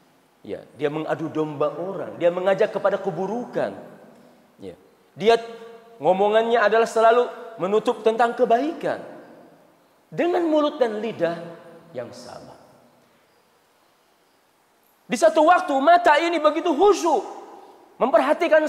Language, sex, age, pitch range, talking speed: Indonesian, male, 40-59, 215-320 Hz, 100 wpm